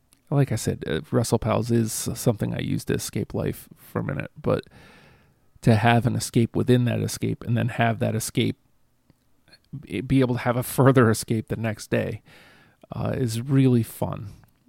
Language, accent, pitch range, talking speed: English, American, 115-135 Hz, 175 wpm